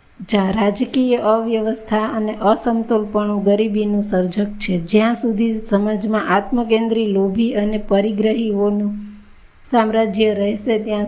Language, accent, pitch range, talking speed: Gujarati, native, 205-230 Hz, 105 wpm